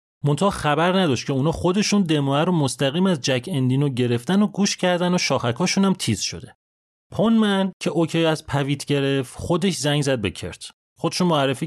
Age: 30-49